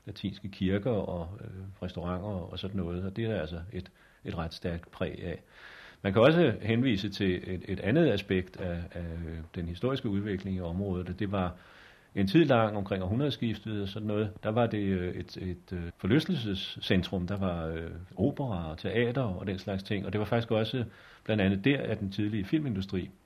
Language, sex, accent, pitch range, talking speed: Danish, male, native, 90-105 Hz, 190 wpm